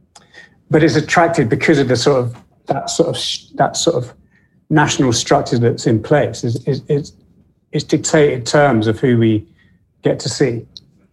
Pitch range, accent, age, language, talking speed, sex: 120-150 Hz, British, 40-59, English, 160 wpm, male